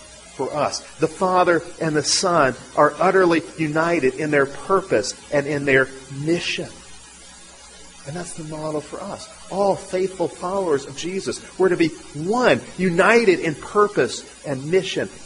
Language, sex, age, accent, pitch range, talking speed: English, male, 40-59, American, 140-185 Hz, 145 wpm